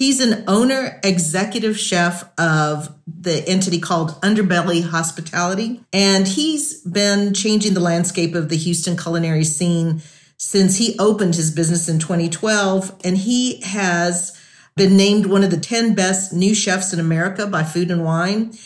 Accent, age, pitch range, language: American, 50-69, 160-195 Hz, English